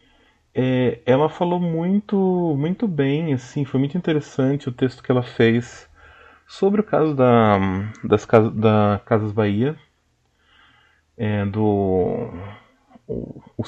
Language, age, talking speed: Portuguese, 30-49, 115 wpm